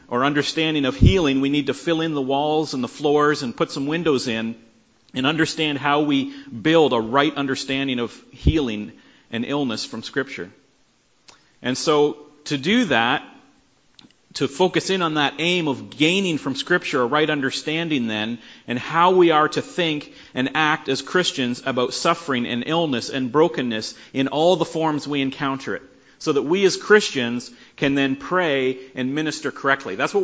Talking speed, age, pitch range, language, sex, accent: 175 wpm, 40-59, 135-165 Hz, English, male, American